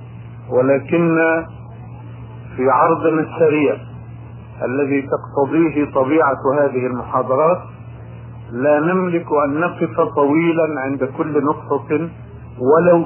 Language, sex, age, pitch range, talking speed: Arabic, male, 50-69, 120-160 Hz, 85 wpm